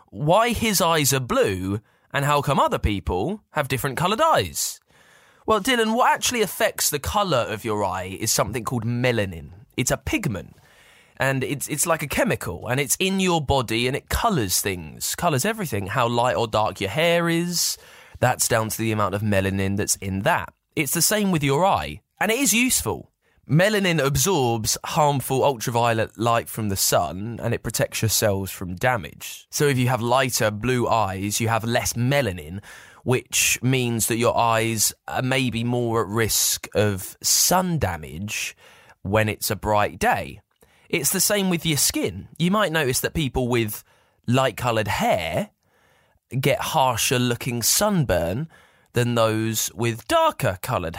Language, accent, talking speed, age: English, British, 165 wpm, 20-39